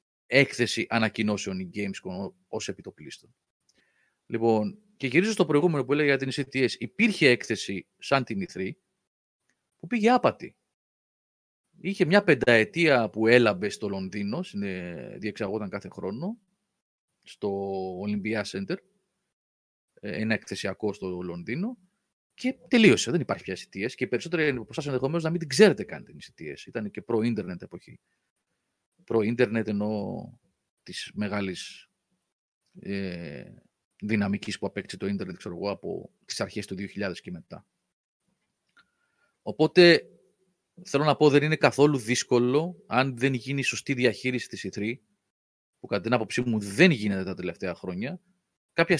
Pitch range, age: 105-180 Hz, 30-49